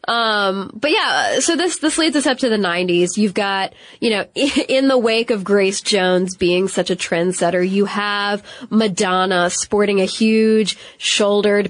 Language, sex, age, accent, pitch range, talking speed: English, female, 20-39, American, 190-240 Hz, 170 wpm